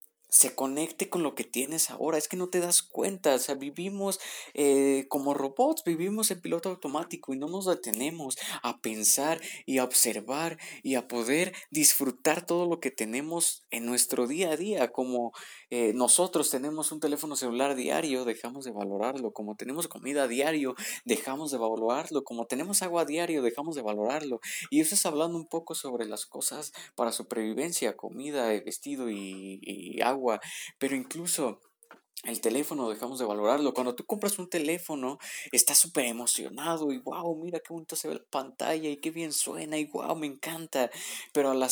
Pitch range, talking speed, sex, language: 130-165 Hz, 175 wpm, male, Spanish